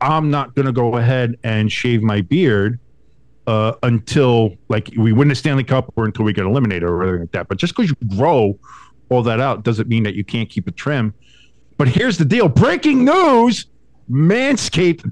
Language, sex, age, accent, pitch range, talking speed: English, male, 50-69, American, 115-155 Hz, 200 wpm